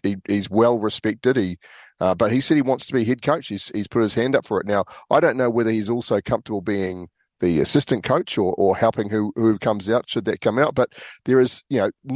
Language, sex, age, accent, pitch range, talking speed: English, male, 40-59, Australian, 100-120 Hz, 250 wpm